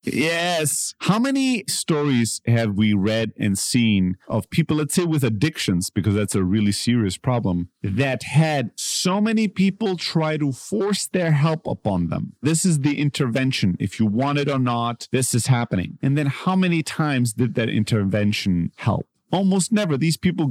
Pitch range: 110-170 Hz